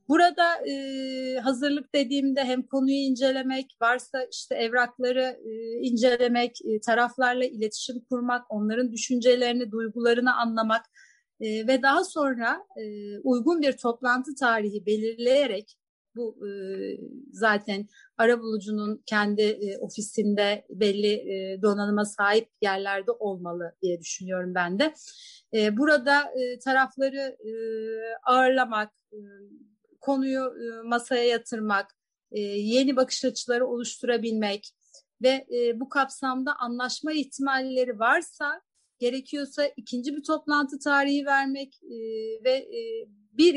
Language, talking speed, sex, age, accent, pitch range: Turkish, 105 wpm, female, 30-49, native, 215-275 Hz